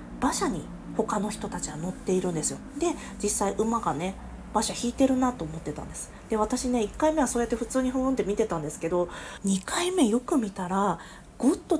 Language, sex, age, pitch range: Japanese, female, 40-59, 180-255 Hz